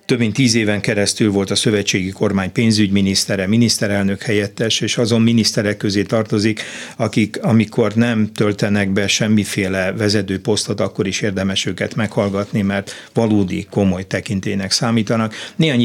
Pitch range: 100-120 Hz